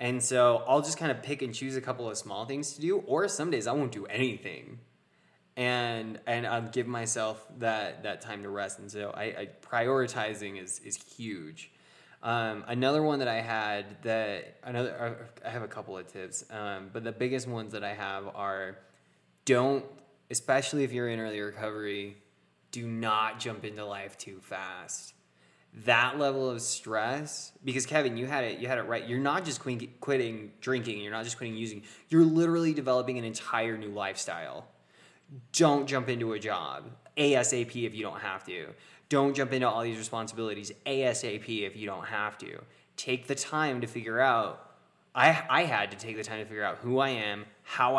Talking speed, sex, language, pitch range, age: 190 wpm, male, English, 105-130 Hz, 20-39